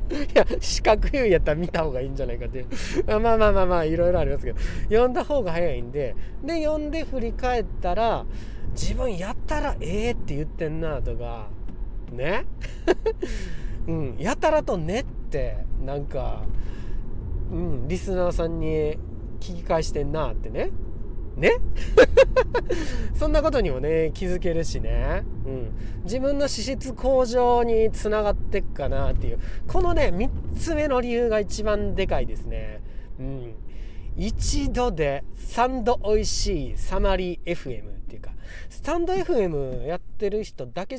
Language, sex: Japanese, male